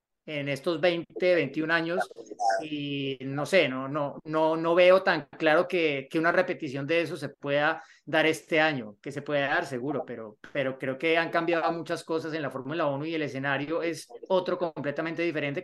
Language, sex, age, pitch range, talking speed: Spanish, male, 30-49, 145-175 Hz, 190 wpm